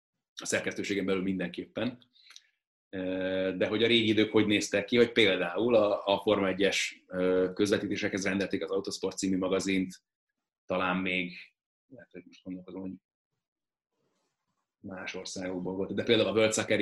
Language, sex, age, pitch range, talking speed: Hungarian, male, 30-49, 95-105 Hz, 120 wpm